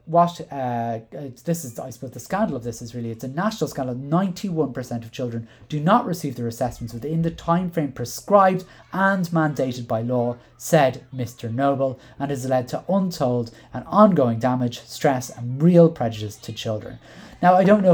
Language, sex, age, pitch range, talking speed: English, male, 30-49, 120-160 Hz, 180 wpm